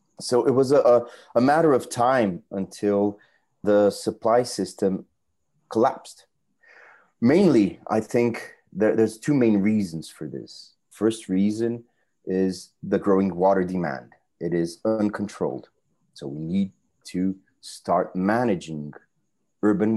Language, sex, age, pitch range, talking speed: English, male, 30-49, 95-125 Hz, 115 wpm